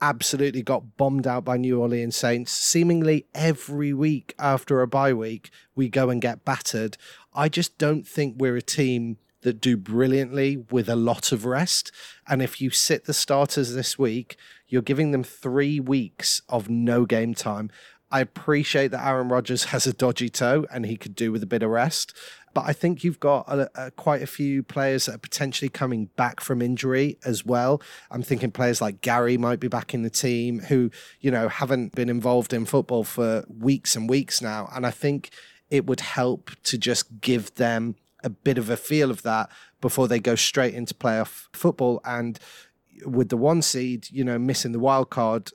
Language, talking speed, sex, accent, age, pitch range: English, 195 wpm, male, British, 30-49, 120-140 Hz